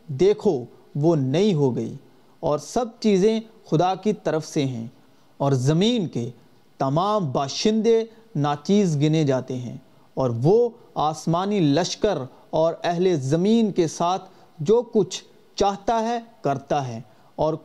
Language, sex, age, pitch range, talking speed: Urdu, male, 40-59, 155-220 Hz, 130 wpm